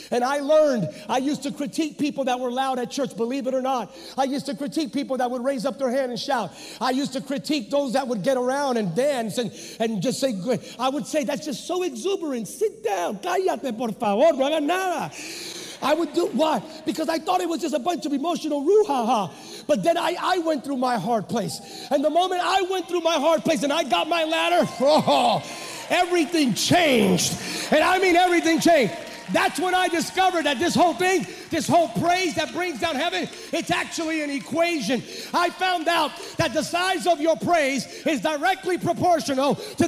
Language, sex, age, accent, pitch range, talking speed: English, male, 40-59, American, 280-375 Hz, 205 wpm